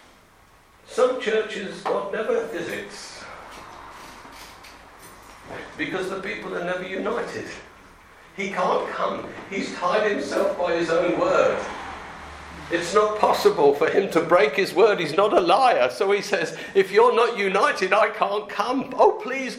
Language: English